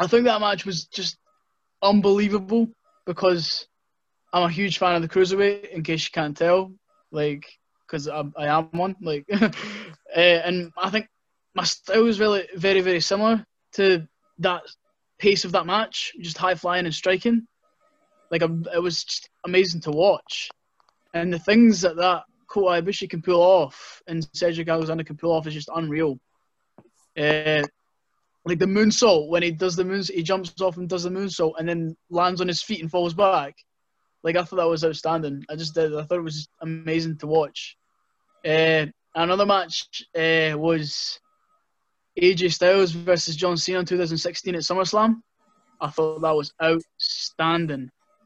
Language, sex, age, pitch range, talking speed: English, male, 20-39, 165-195 Hz, 165 wpm